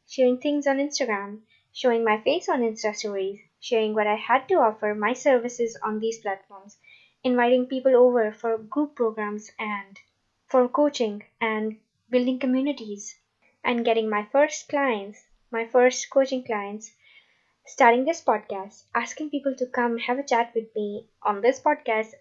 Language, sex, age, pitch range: English, female, 20-39, 215-260 Hz